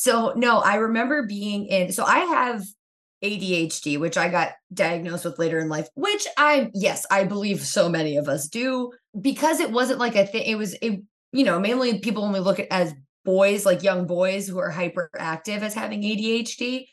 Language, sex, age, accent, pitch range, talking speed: English, female, 20-39, American, 175-215 Hz, 195 wpm